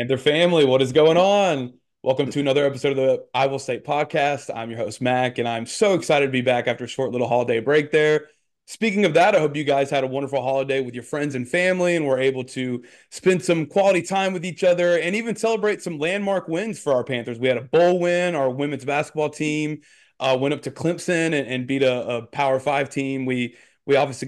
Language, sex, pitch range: English, male, 130-175 Hz